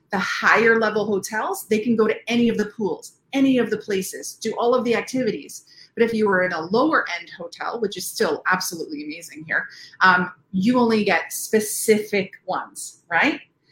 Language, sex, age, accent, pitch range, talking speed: English, female, 30-49, American, 190-240 Hz, 190 wpm